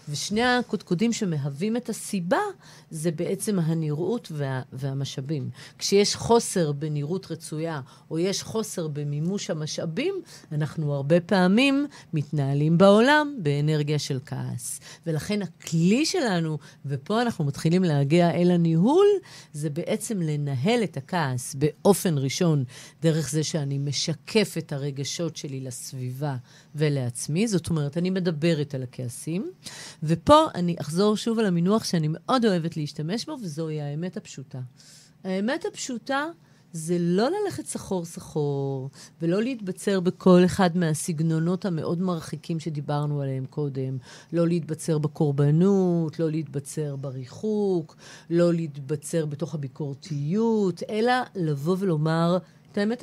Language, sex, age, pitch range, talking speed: Hebrew, female, 50-69, 150-195 Hz, 115 wpm